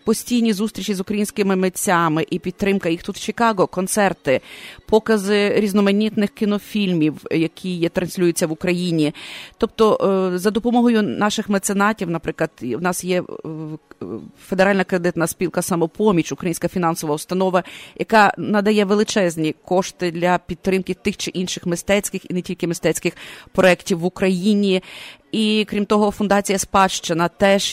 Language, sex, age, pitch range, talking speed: English, female, 30-49, 175-210 Hz, 130 wpm